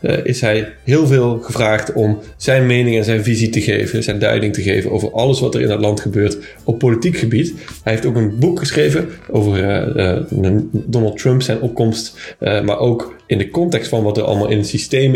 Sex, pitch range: male, 105-130 Hz